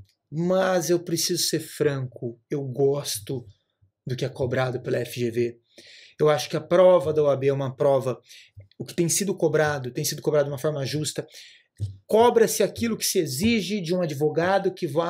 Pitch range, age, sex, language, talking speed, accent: 135-200 Hz, 30-49, male, Portuguese, 180 wpm, Brazilian